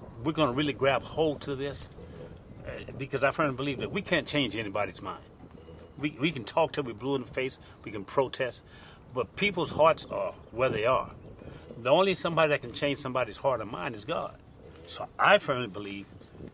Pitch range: 105-140 Hz